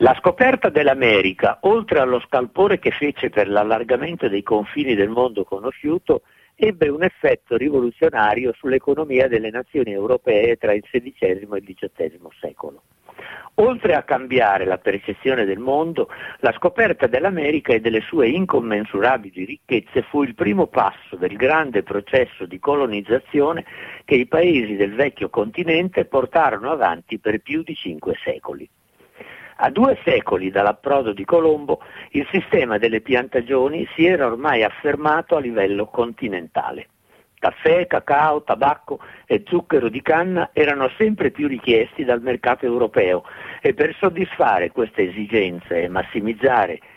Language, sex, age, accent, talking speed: Italian, male, 50-69, native, 135 wpm